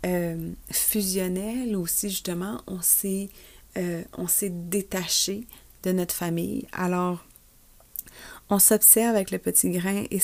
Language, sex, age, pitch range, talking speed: French, female, 30-49, 160-195 Hz, 110 wpm